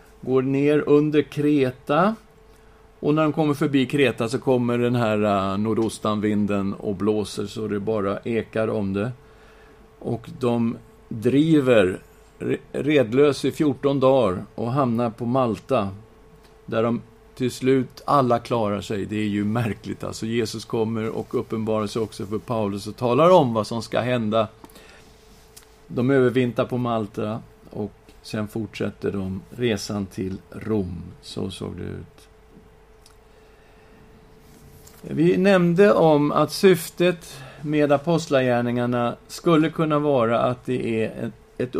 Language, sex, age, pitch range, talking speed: Swedish, male, 50-69, 110-135 Hz, 130 wpm